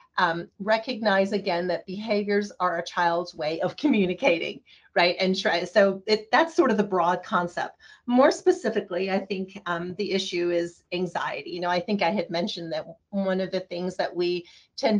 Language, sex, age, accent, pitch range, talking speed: English, female, 40-59, American, 175-210 Hz, 175 wpm